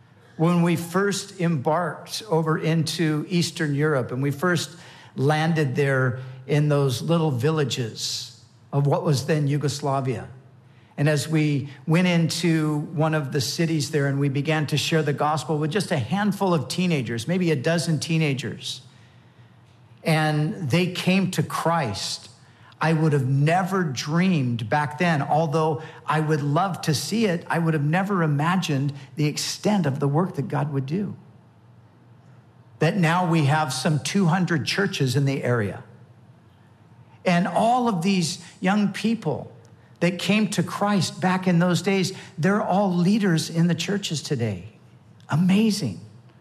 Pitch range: 135-170 Hz